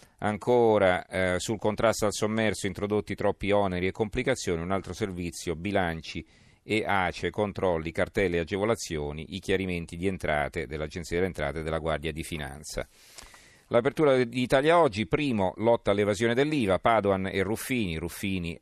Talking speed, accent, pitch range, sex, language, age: 145 wpm, native, 90-110 Hz, male, Italian, 40-59